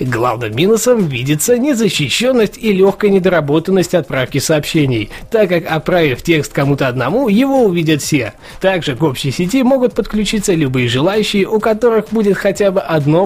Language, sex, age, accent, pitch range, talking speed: Russian, male, 20-39, native, 140-205 Hz, 145 wpm